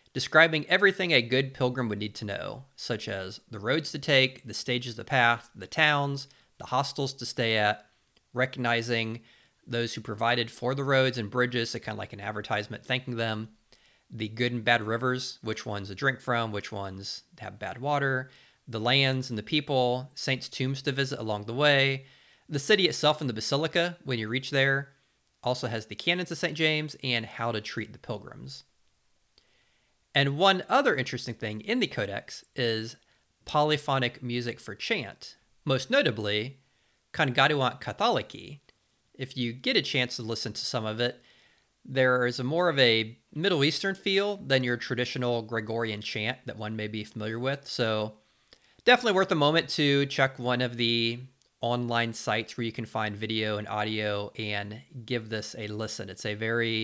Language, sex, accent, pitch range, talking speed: English, male, American, 110-135 Hz, 175 wpm